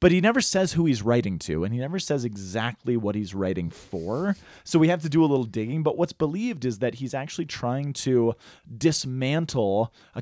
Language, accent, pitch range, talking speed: English, American, 115-155 Hz, 210 wpm